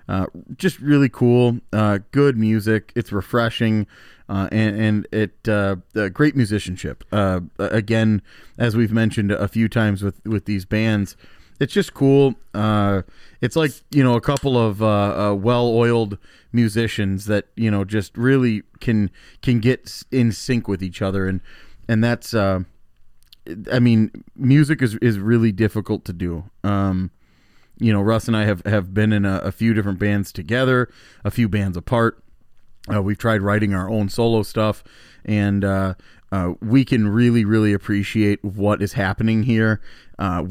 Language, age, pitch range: English, 30-49, 100-120 Hz